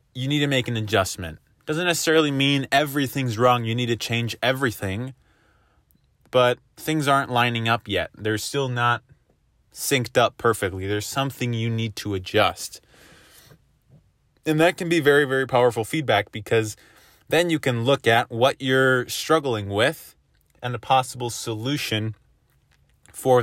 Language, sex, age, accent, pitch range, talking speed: English, male, 20-39, American, 105-130 Hz, 145 wpm